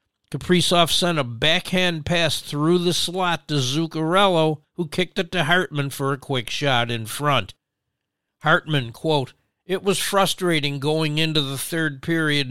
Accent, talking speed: American, 150 wpm